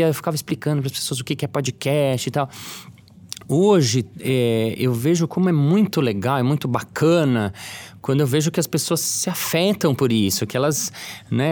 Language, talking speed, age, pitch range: Portuguese, 190 wpm, 20-39, 125-170 Hz